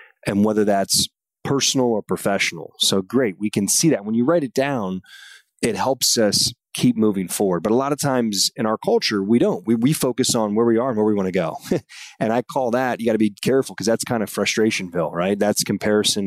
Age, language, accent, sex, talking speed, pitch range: 30-49, English, American, male, 235 wpm, 100-120 Hz